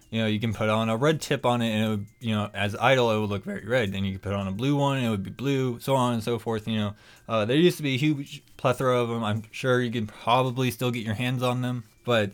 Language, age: English, 20-39